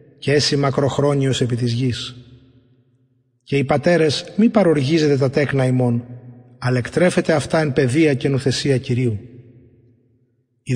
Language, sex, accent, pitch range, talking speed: Greek, male, native, 125-165 Hz, 135 wpm